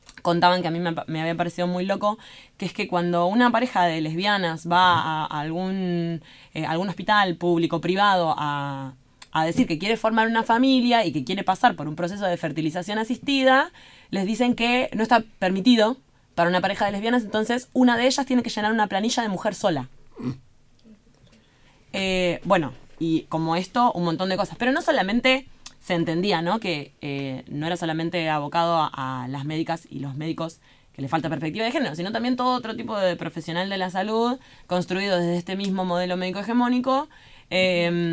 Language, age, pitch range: Spanish, 20-39, 165-225 Hz